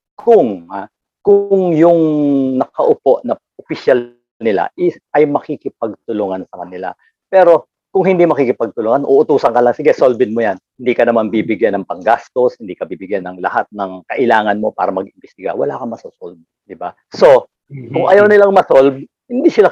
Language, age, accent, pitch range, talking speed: English, 50-69, Filipino, 135-195 Hz, 150 wpm